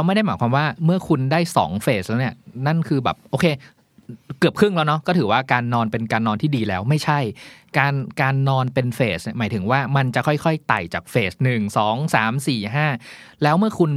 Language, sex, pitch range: Thai, male, 115-155 Hz